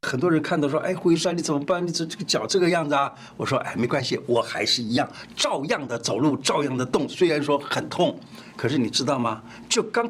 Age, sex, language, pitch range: 50-69, male, Chinese, 135-180 Hz